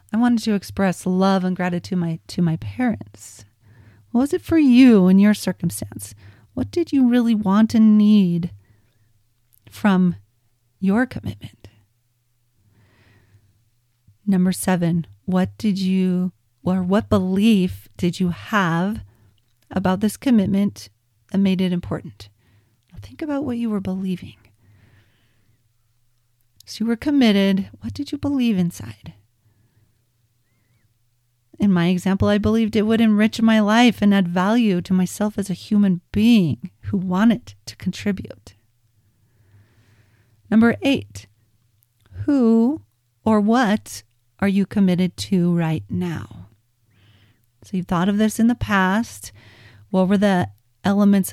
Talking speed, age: 125 wpm, 40-59